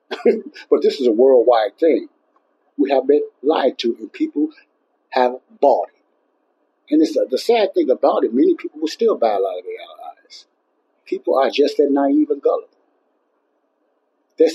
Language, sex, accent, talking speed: English, male, American, 175 wpm